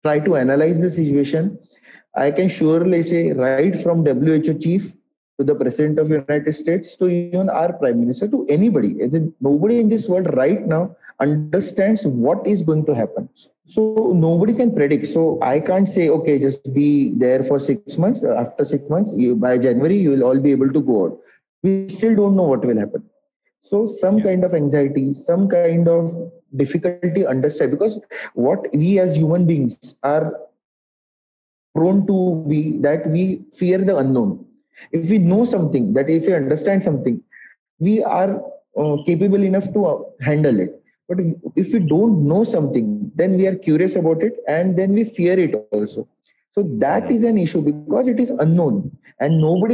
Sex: male